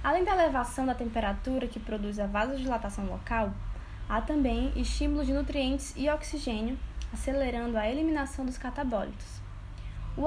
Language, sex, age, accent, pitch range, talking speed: Portuguese, female, 10-29, Brazilian, 210-270 Hz, 135 wpm